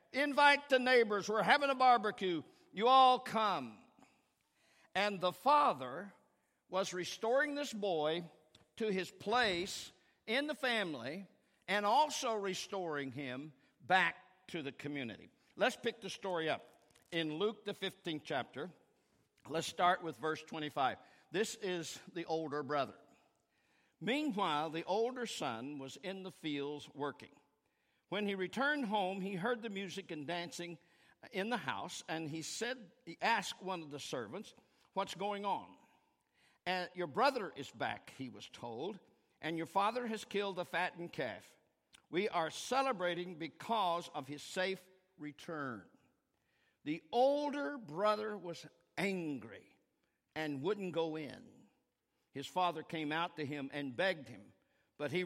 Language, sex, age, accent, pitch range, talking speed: English, male, 50-69, American, 160-220 Hz, 140 wpm